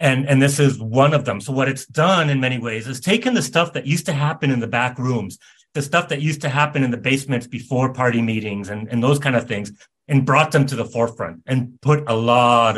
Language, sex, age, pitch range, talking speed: English, male, 30-49, 115-150 Hz, 255 wpm